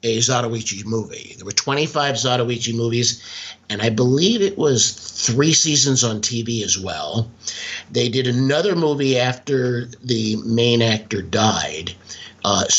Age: 50-69